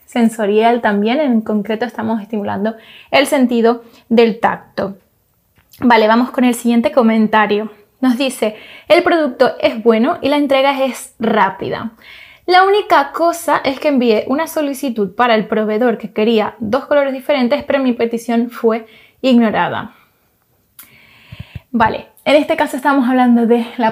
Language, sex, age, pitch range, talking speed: Spanish, female, 20-39, 220-270 Hz, 140 wpm